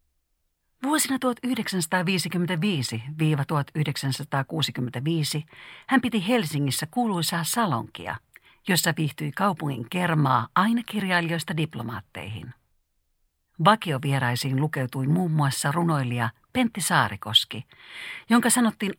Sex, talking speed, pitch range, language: female, 75 wpm, 130-205 Hz, Finnish